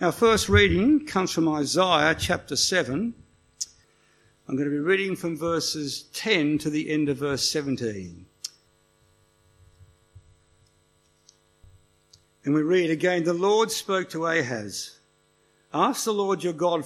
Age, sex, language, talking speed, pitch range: 60-79, male, English, 130 wpm, 120-175 Hz